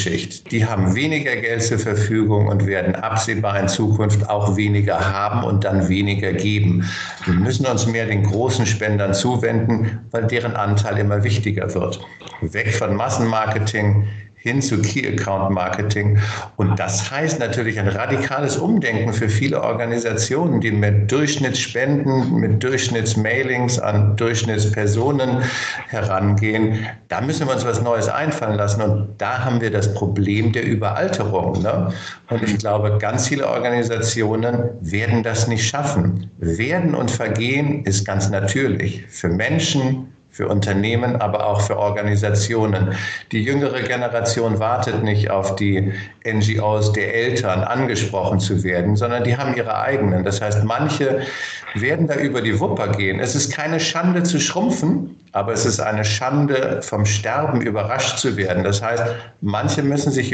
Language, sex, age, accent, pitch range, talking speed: German, male, 60-79, German, 100-125 Hz, 145 wpm